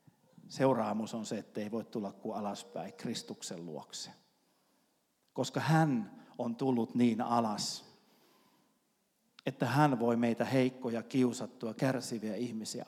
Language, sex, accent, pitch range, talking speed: Finnish, male, native, 110-135 Hz, 115 wpm